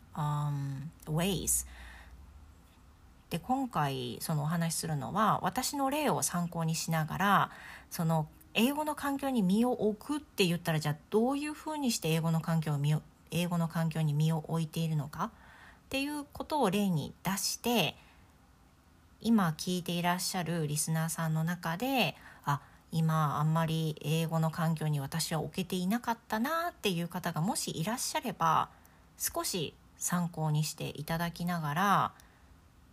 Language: English